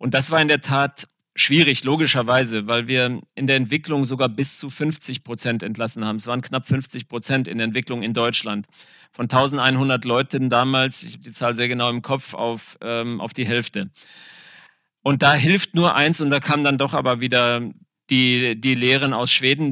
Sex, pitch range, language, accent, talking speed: male, 125-150 Hz, German, German, 190 wpm